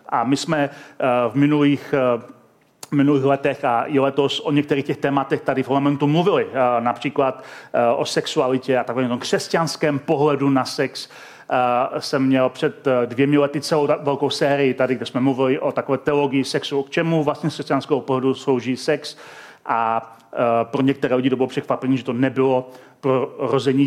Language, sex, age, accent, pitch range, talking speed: Czech, male, 30-49, native, 130-150 Hz, 160 wpm